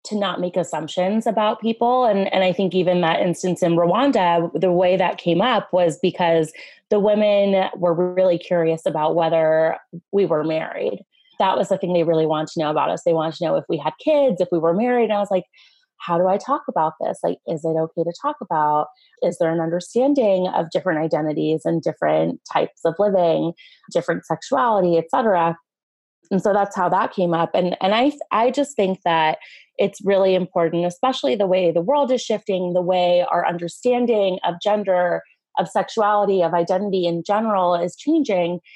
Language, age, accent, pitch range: English, 20-39, American, 165-200 Hz